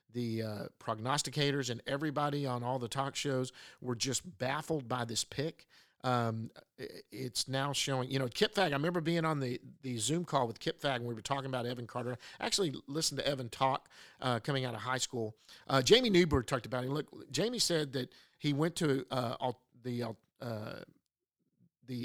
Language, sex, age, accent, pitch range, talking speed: English, male, 50-69, American, 120-145 Hz, 190 wpm